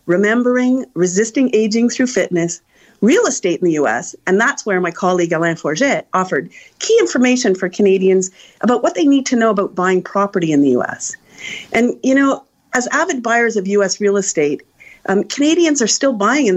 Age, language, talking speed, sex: 40-59, English, 180 wpm, female